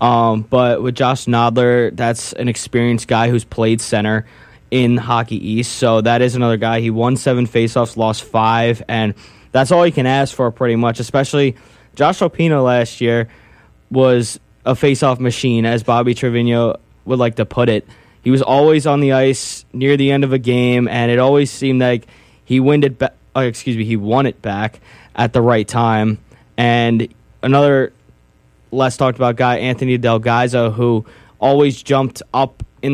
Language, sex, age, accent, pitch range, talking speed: English, male, 20-39, American, 115-130 Hz, 175 wpm